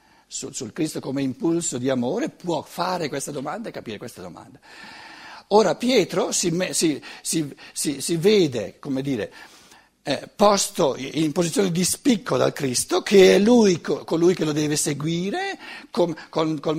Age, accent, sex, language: 60-79, native, male, Italian